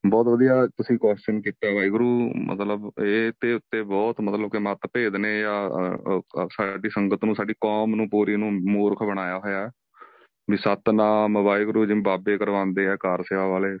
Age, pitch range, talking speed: 30-49, 105-130 Hz, 150 wpm